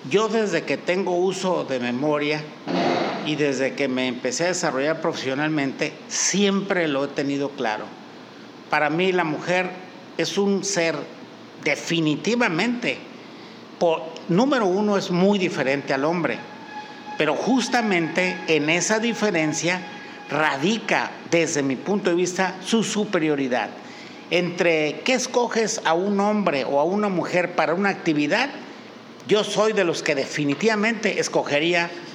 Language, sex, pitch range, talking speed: Spanish, male, 155-205 Hz, 130 wpm